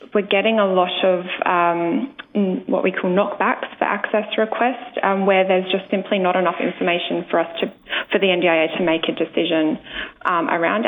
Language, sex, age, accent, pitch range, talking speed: English, female, 20-39, Australian, 180-215 Hz, 180 wpm